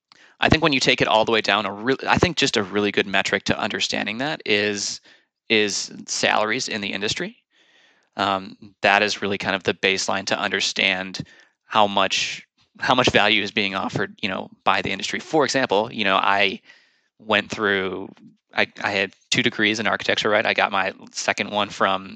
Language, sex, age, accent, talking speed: English, male, 20-39, American, 190 wpm